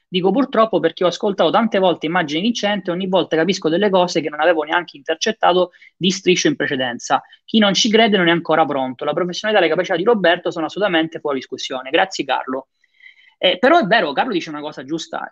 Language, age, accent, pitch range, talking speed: Italian, 20-39, native, 160-220 Hz, 210 wpm